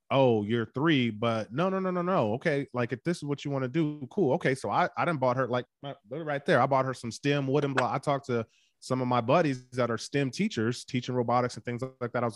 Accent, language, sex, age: American, English, male, 20-39